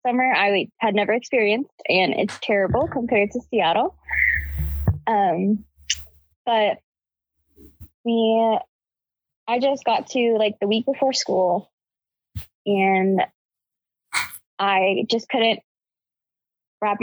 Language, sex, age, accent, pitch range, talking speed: English, female, 10-29, American, 190-225 Hz, 95 wpm